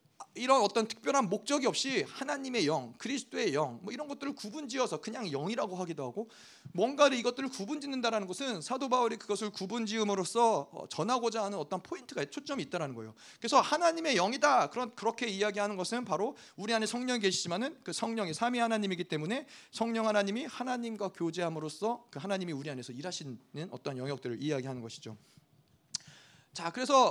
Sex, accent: male, native